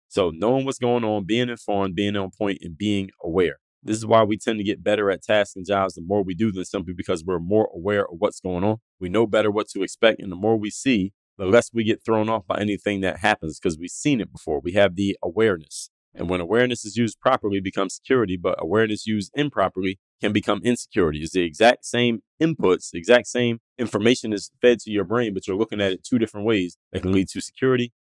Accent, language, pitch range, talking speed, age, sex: American, English, 95-115 Hz, 240 wpm, 30-49, male